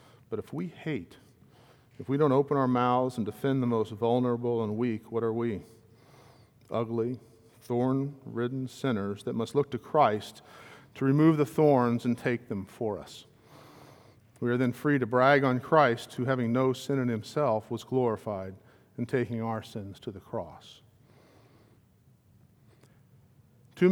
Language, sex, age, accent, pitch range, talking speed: English, male, 50-69, American, 115-135 Hz, 155 wpm